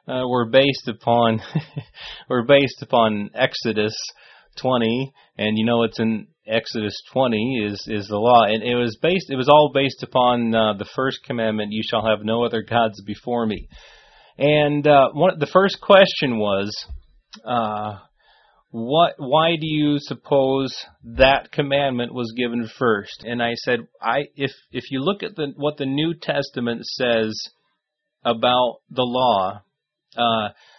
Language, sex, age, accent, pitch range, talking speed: English, male, 30-49, American, 115-140 Hz, 150 wpm